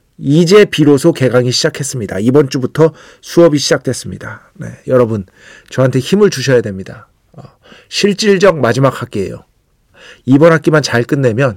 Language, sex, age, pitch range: Korean, male, 40-59, 115-165 Hz